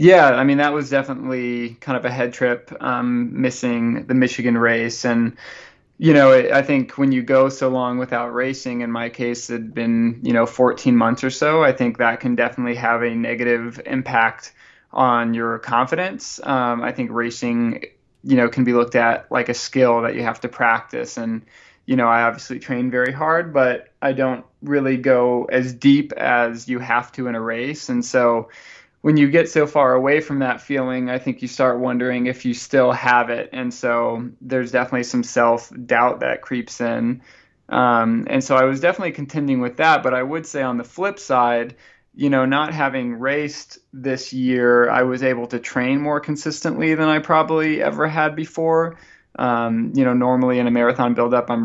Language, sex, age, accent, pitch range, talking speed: English, male, 20-39, American, 120-135 Hz, 195 wpm